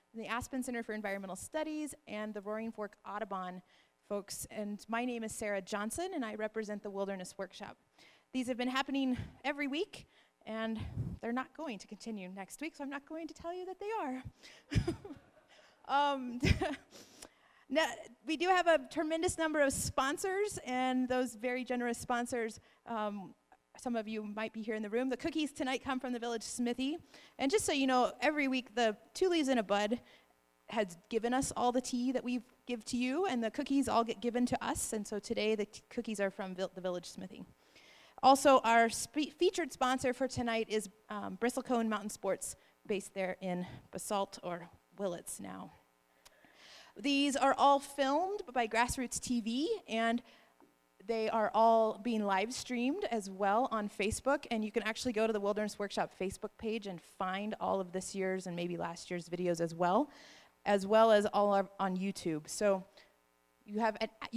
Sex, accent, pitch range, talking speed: female, American, 205-265 Hz, 180 wpm